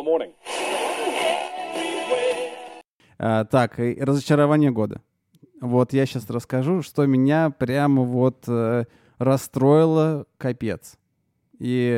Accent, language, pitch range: native, Russian, 125-165 Hz